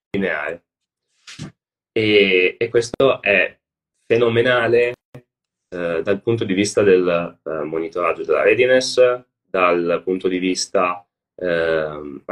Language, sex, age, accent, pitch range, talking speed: Italian, male, 30-49, native, 95-125 Hz, 95 wpm